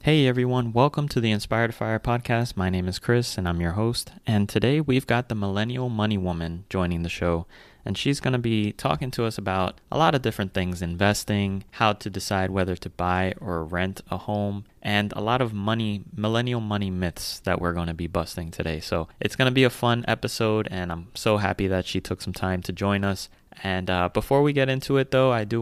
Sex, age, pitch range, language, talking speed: male, 20-39, 95-120 Hz, English, 225 wpm